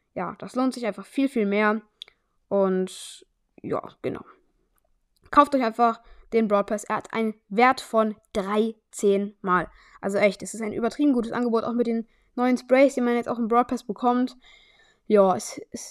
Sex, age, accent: female, 10-29, German